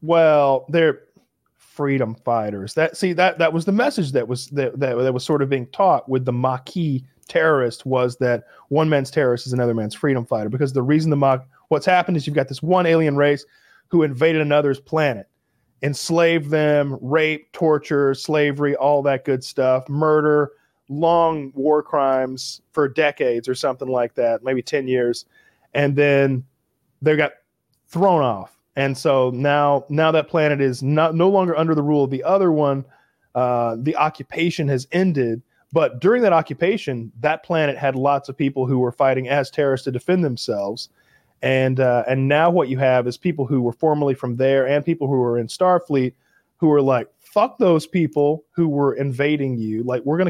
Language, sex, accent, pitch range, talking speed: English, male, American, 130-155 Hz, 185 wpm